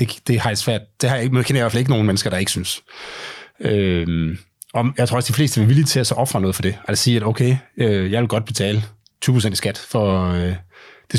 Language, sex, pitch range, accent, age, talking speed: Danish, male, 105-135 Hz, native, 30-49, 275 wpm